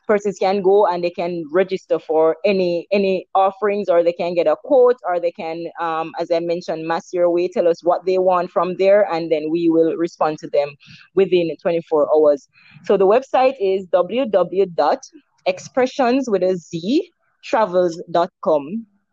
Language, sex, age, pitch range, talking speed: English, female, 20-39, 170-220 Hz, 155 wpm